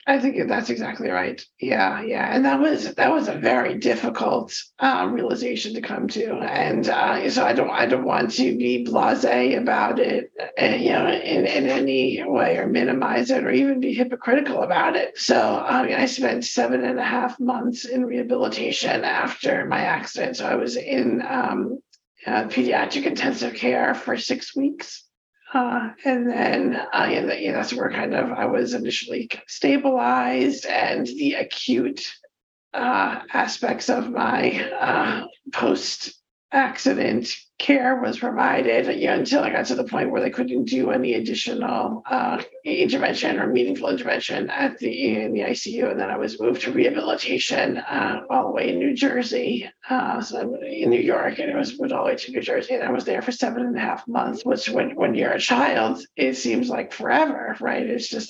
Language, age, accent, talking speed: English, 50-69, American, 185 wpm